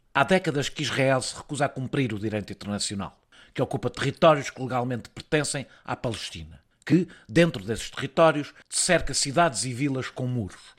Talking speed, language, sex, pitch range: 160 wpm, Portuguese, male, 120-155 Hz